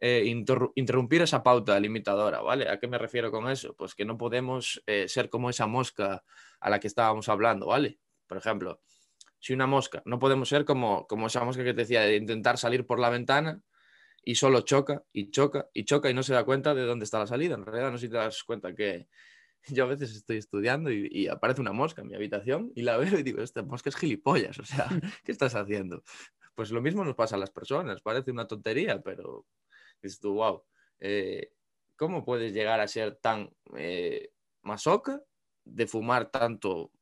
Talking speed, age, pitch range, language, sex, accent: 205 wpm, 20-39, 115-150 Hz, Spanish, male, Spanish